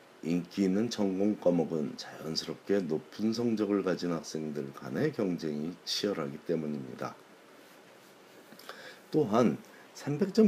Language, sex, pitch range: Korean, male, 75-95 Hz